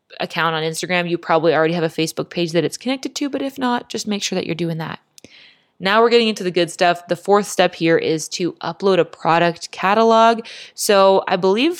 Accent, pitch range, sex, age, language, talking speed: American, 160-195 Hz, female, 20-39, English, 225 wpm